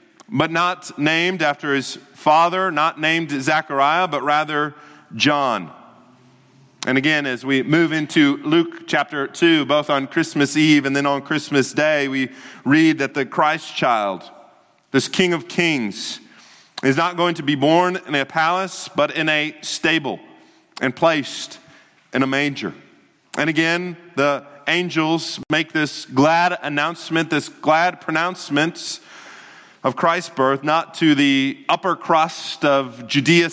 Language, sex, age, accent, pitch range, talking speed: English, male, 30-49, American, 140-170 Hz, 140 wpm